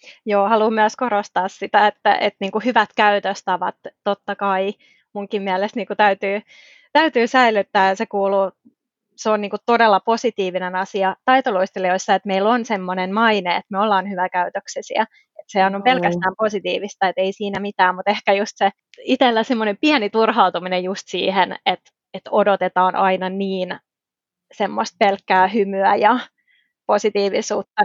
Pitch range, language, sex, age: 195-220 Hz, Finnish, female, 20-39